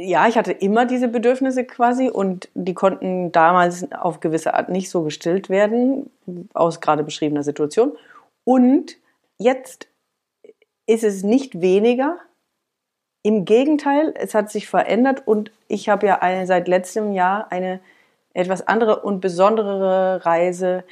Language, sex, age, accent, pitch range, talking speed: German, female, 40-59, German, 175-235 Hz, 135 wpm